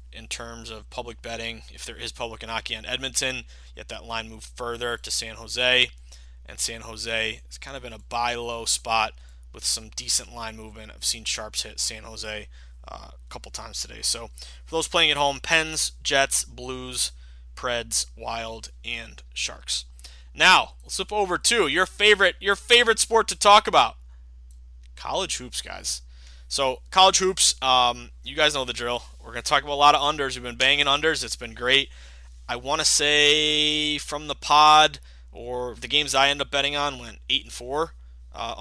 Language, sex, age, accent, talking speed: English, male, 20-39, American, 190 wpm